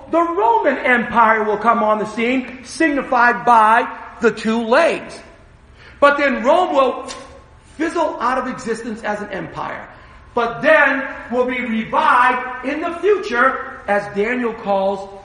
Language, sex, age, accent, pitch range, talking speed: English, male, 40-59, American, 220-280 Hz, 140 wpm